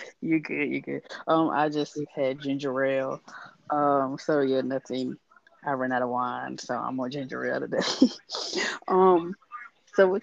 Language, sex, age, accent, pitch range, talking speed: English, female, 20-39, American, 140-175 Hz, 165 wpm